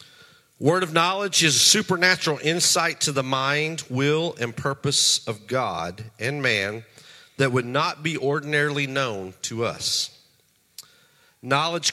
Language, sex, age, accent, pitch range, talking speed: English, male, 40-59, American, 120-150 Hz, 130 wpm